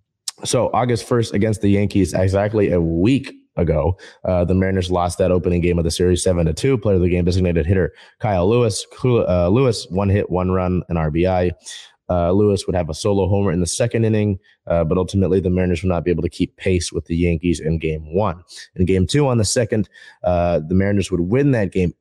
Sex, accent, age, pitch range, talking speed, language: male, American, 30-49, 85-105 Hz, 220 wpm, English